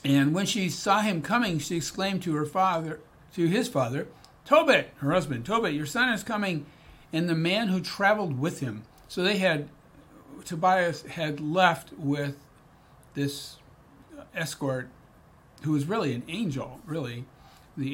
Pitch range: 135-175 Hz